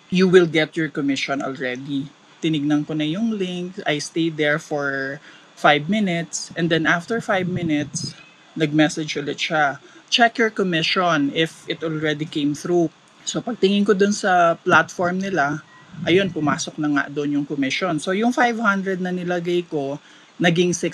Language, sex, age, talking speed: Filipino, male, 20-39, 155 wpm